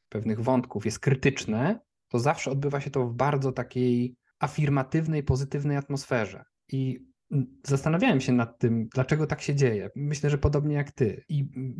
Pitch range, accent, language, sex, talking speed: 115-140 Hz, native, Polish, male, 155 wpm